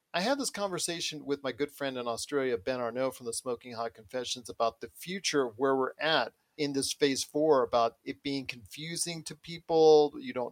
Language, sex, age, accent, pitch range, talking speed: English, male, 40-59, American, 135-170 Hz, 205 wpm